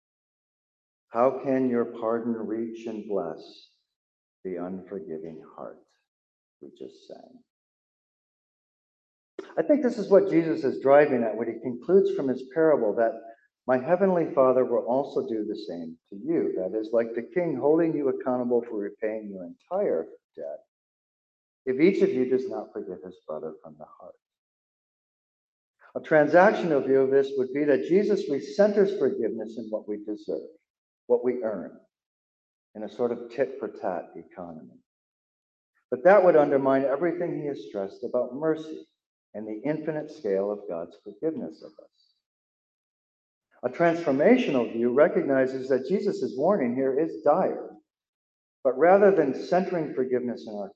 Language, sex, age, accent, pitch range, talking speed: English, male, 50-69, American, 110-165 Hz, 145 wpm